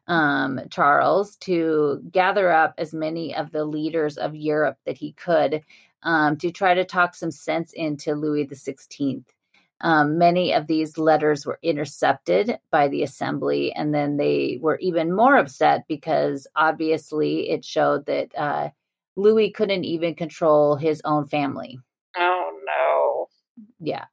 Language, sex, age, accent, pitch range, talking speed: English, female, 30-49, American, 150-175 Hz, 140 wpm